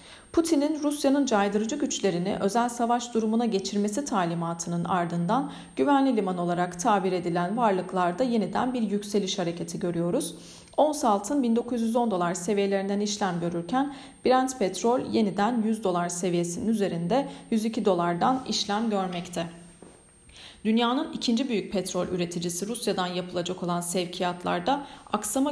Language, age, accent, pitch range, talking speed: Turkish, 40-59, native, 180-240 Hz, 115 wpm